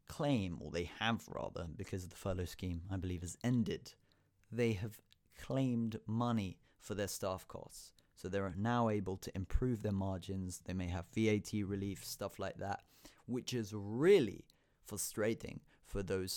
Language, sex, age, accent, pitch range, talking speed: English, male, 30-49, British, 95-115 Hz, 165 wpm